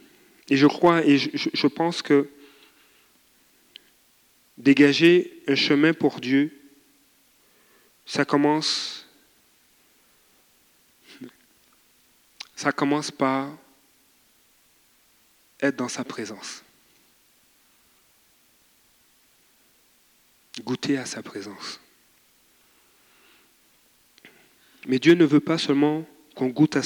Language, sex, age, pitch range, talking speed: French, male, 40-59, 130-155 Hz, 75 wpm